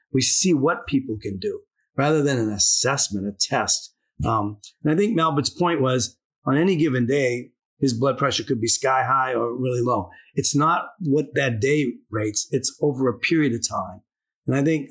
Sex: male